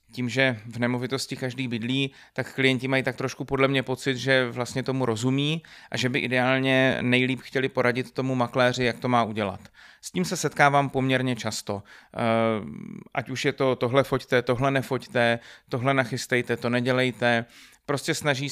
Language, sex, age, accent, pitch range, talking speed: Czech, male, 30-49, native, 120-135 Hz, 165 wpm